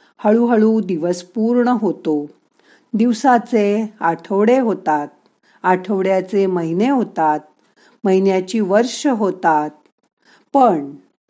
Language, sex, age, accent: Marathi, female, 50-69, native